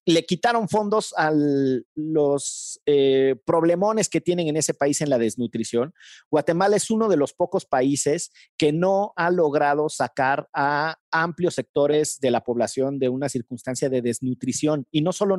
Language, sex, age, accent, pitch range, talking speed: Spanish, male, 40-59, Mexican, 140-190 Hz, 160 wpm